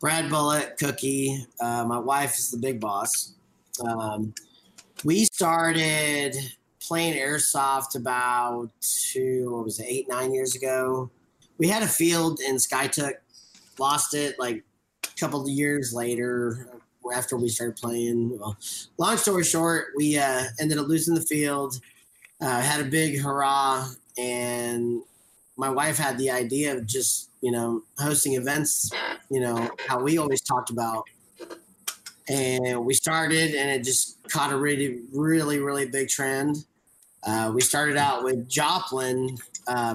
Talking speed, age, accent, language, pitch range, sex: 145 wpm, 30-49, American, English, 125-145 Hz, male